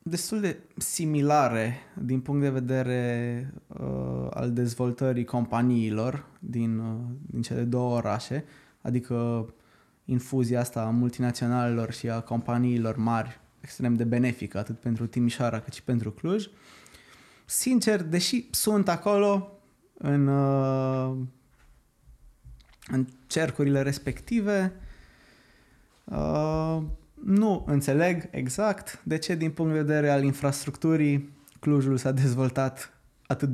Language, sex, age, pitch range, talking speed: Romanian, male, 20-39, 120-150 Hz, 110 wpm